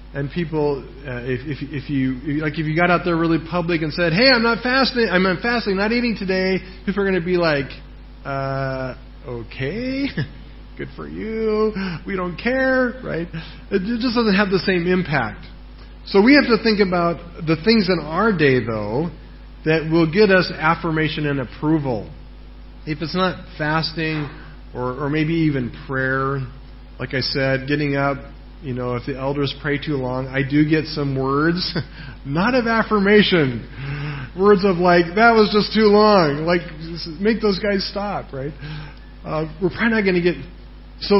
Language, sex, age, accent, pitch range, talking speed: English, male, 40-59, American, 140-190 Hz, 175 wpm